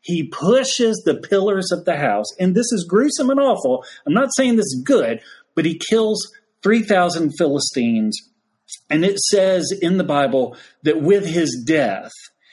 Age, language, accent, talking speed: 40-59, English, American, 165 wpm